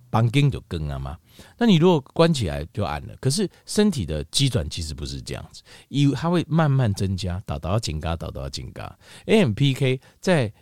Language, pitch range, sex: Chinese, 90-130 Hz, male